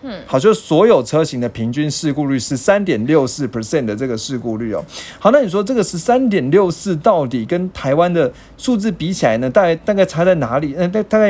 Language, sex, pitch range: Chinese, male, 130-185 Hz